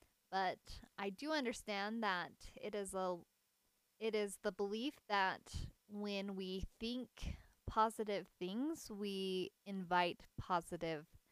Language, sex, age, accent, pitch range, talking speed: English, female, 20-39, American, 185-230 Hz, 110 wpm